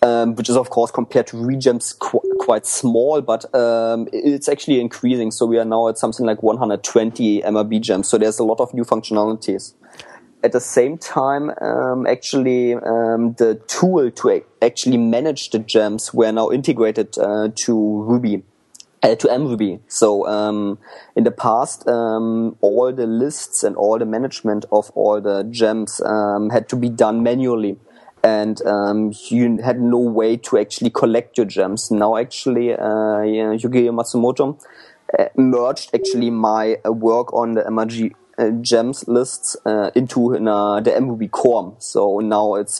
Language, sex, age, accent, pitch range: Chinese, male, 20-39, German, 110-120 Hz